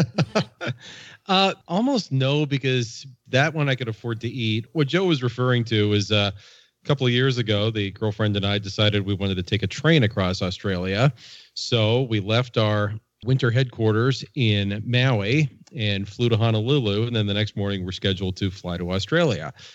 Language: English